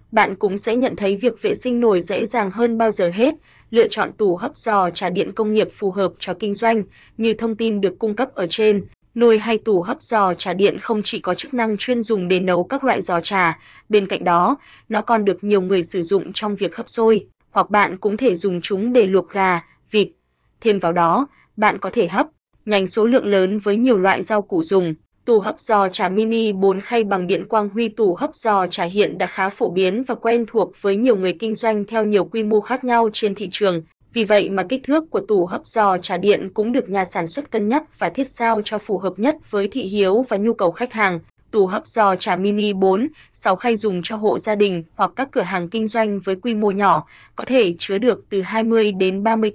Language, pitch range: Vietnamese, 190-230 Hz